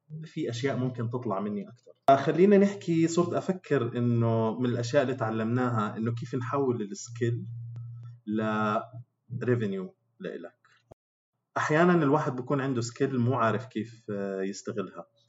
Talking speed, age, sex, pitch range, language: 120 wpm, 30-49, male, 105-125 Hz, Arabic